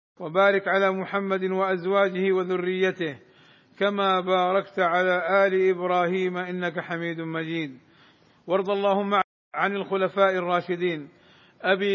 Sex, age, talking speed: male, 50-69, 95 wpm